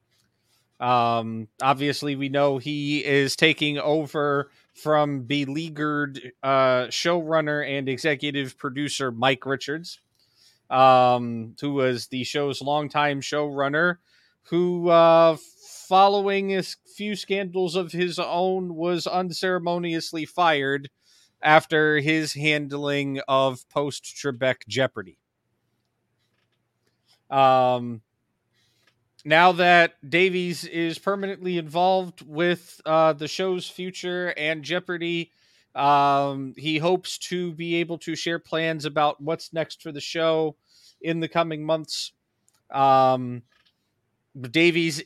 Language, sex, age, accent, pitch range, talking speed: English, male, 30-49, American, 135-170 Hz, 105 wpm